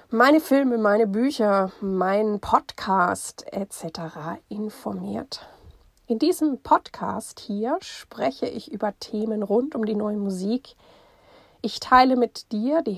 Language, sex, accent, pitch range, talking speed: German, female, German, 195-245 Hz, 120 wpm